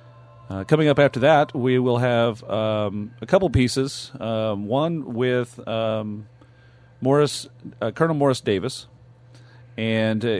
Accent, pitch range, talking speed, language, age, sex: American, 105-130 Hz, 135 wpm, English, 40-59, male